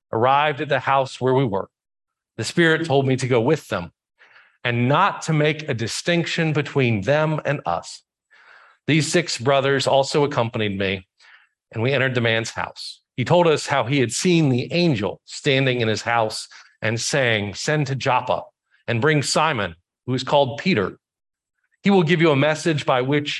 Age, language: 40-59, English